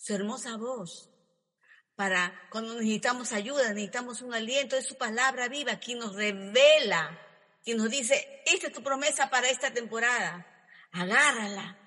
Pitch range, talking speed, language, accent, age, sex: 215-290 Hz, 140 wpm, Spanish, American, 40-59, female